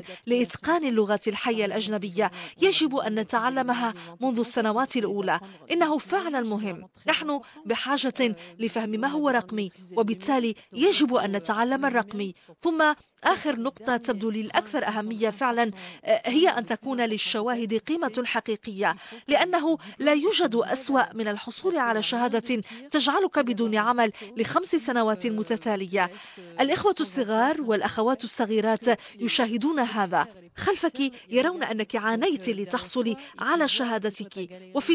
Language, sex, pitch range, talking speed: Arabic, female, 215-275 Hz, 110 wpm